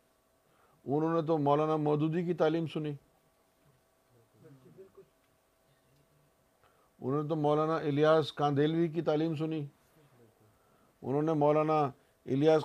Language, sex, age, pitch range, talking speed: Urdu, male, 50-69, 130-160 Hz, 100 wpm